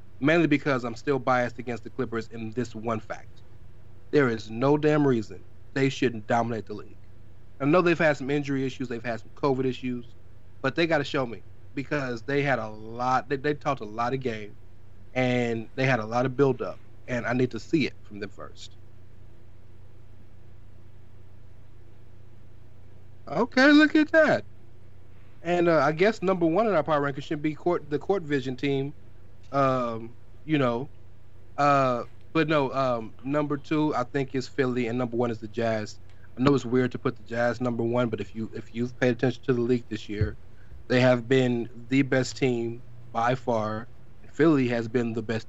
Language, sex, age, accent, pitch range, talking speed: English, male, 30-49, American, 110-135 Hz, 190 wpm